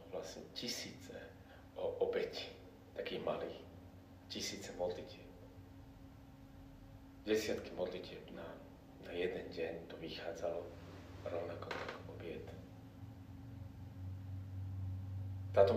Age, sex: 30-49, male